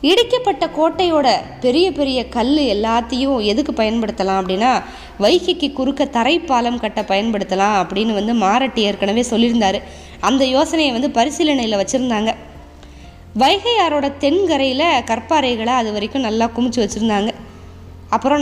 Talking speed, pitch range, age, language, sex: 110 wpm, 220-290 Hz, 20-39, Tamil, female